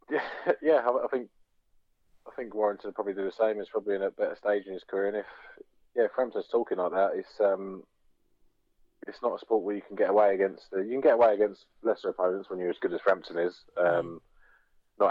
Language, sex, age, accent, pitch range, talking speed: English, male, 20-39, British, 95-110 Hz, 235 wpm